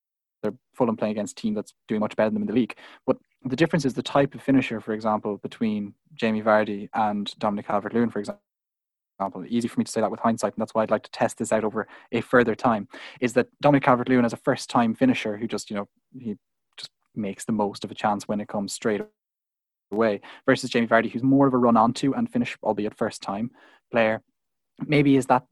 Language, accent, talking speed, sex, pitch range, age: English, Irish, 230 wpm, male, 110-130 Hz, 20-39